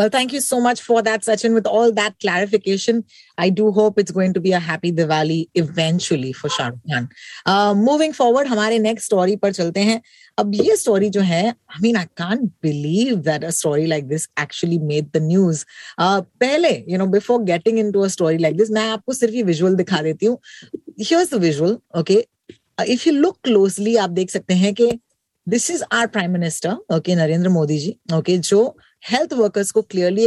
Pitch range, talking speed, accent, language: 175-235 Hz, 200 wpm, native, Hindi